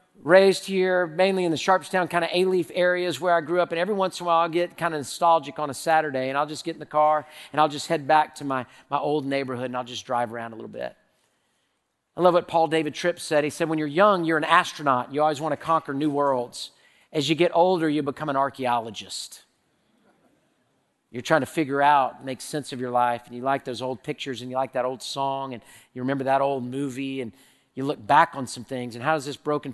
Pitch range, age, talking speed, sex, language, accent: 125-160 Hz, 40-59, 250 wpm, male, English, American